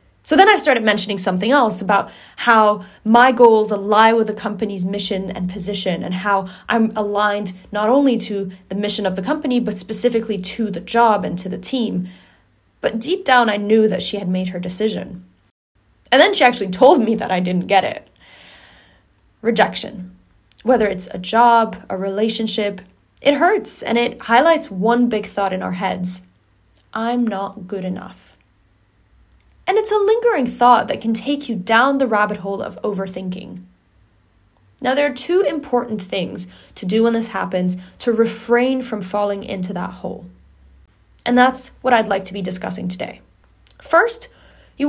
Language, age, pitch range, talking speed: English, 10-29, 190-245 Hz, 170 wpm